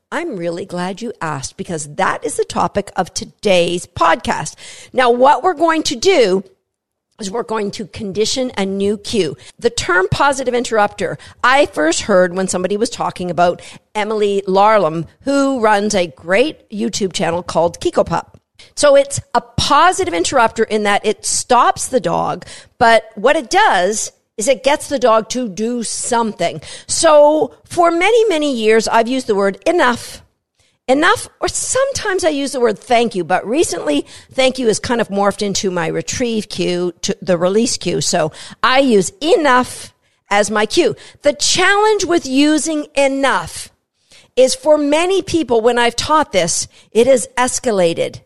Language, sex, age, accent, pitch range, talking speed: English, female, 50-69, American, 200-295 Hz, 160 wpm